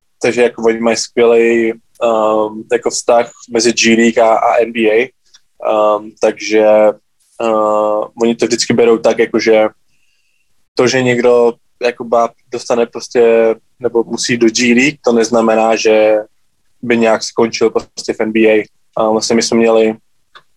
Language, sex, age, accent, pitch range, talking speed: Czech, male, 20-39, native, 110-120 Hz, 135 wpm